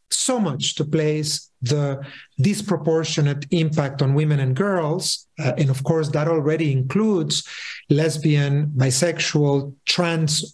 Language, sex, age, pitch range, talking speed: English, male, 40-59, 145-180 Hz, 120 wpm